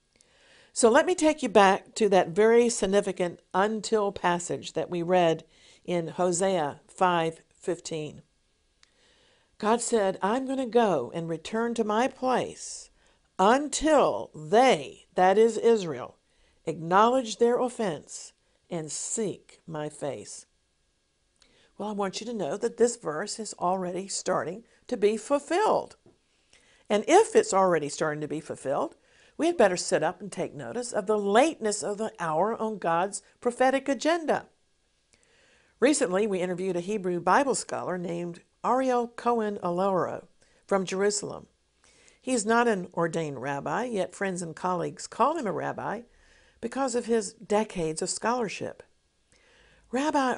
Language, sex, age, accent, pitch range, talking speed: English, female, 50-69, American, 180-240 Hz, 140 wpm